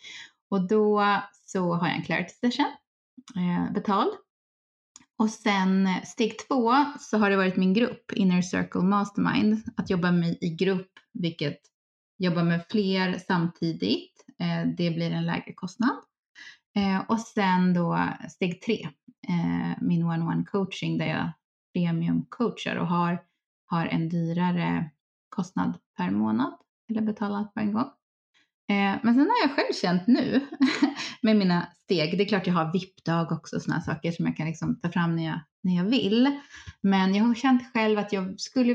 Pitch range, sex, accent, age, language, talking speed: 175-235 Hz, female, native, 20-39, Swedish, 165 wpm